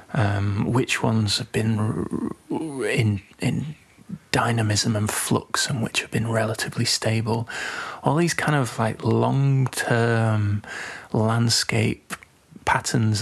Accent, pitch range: British, 105-125 Hz